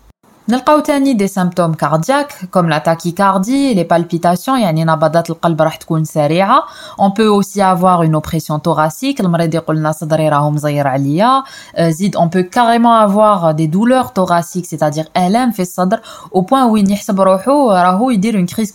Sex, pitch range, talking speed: female, 160-220 Hz, 105 wpm